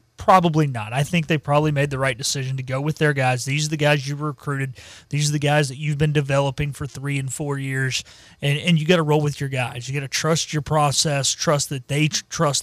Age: 30-49